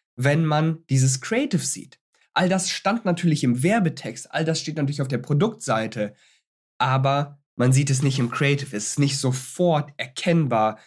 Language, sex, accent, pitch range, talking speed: German, male, German, 130-160 Hz, 165 wpm